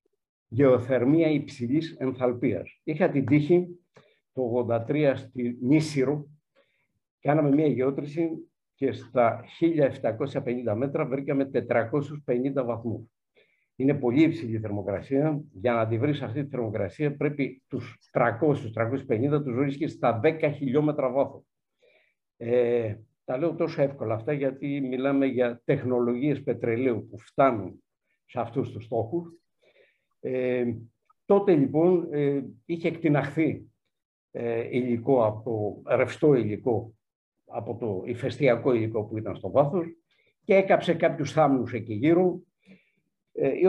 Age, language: 50-69, Greek